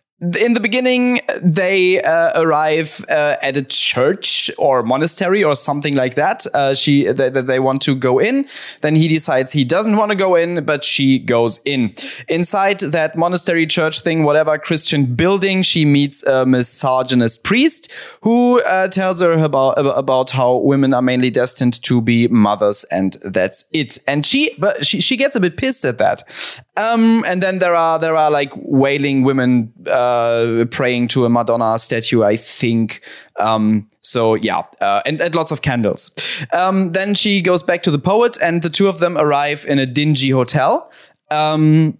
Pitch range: 130-165 Hz